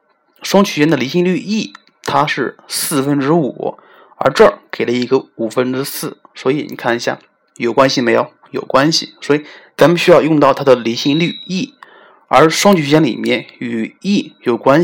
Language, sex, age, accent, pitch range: Chinese, male, 30-49, native, 130-170 Hz